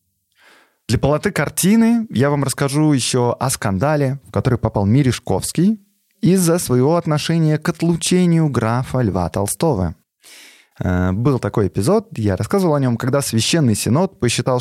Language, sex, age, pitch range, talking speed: Russian, male, 30-49, 115-150 Hz, 130 wpm